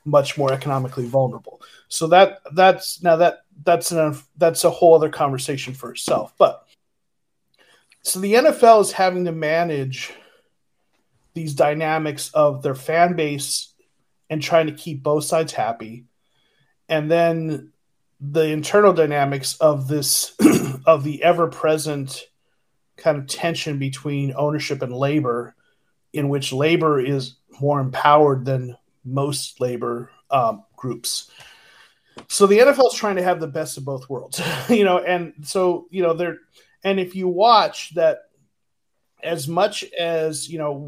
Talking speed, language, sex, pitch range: 140 wpm, English, male, 140-170 Hz